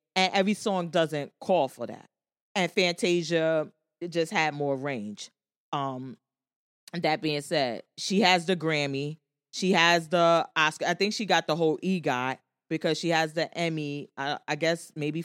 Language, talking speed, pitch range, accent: English, 165 wpm, 145-190 Hz, American